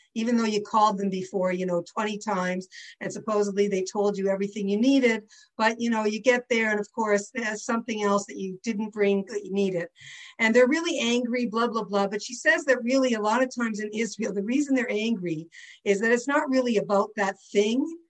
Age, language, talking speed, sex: 50-69, English, 220 wpm, female